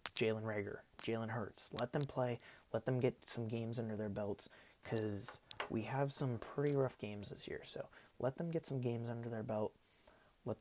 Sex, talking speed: male, 190 wpm